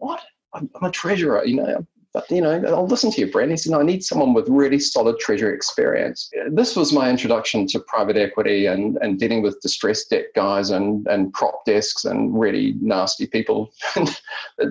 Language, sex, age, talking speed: English, male, 40-59, 200 wpm